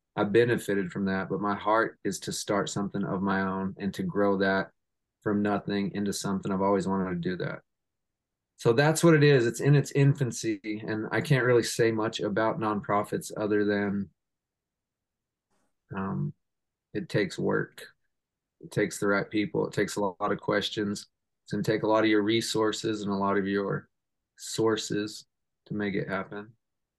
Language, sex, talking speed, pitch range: English, male, 180 wpm, 100-120 Hz